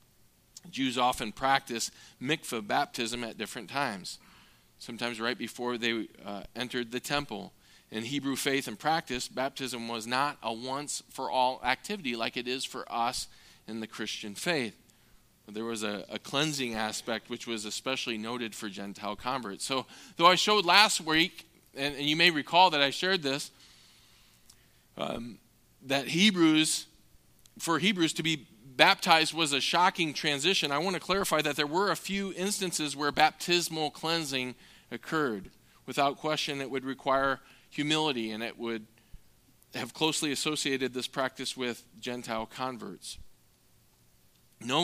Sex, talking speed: male, 145 wpm